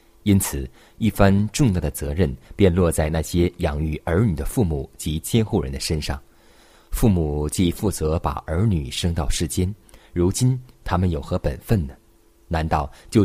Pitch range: 80-100 Hz